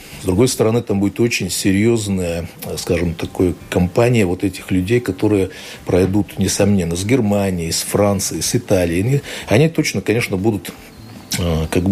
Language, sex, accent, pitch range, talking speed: Russian, male, native, 90-115 Hz, 135 wpm